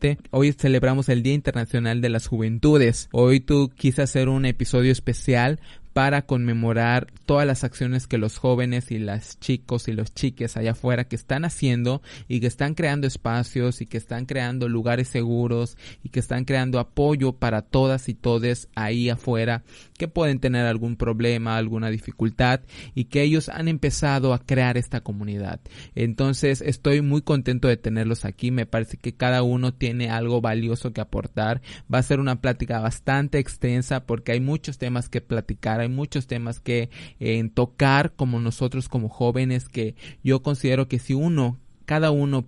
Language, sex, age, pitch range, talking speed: Spanish, male, 20-39, 115-135 Hz, 170 wpm